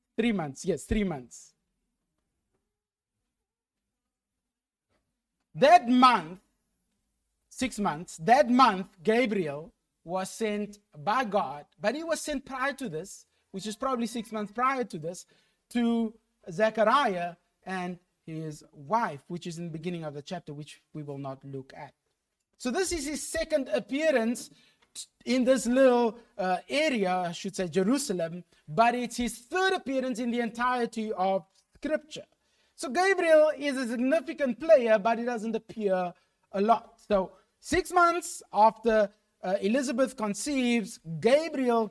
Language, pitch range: English, 190-255 Hz